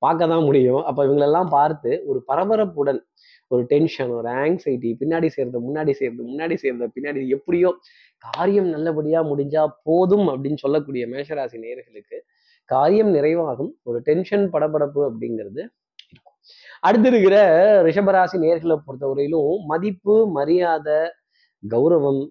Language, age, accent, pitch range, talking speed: Tamil, 20-39, native, 135-195 Hz, 115 wpm